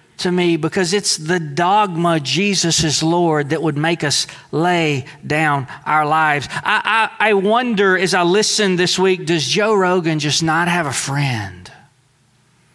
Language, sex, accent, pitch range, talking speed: English, male, American, 130-180 Hz, 160 wpm